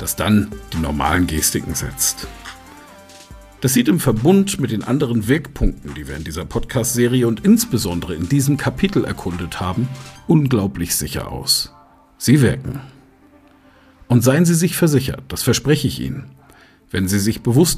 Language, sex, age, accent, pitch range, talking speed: German, male, 50-69, German, 90-135 Hz, 150 wpm